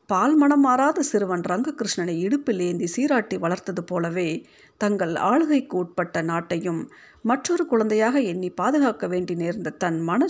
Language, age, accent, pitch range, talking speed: Tamil, 50-69, native, 180-270 Hz, 130 wpm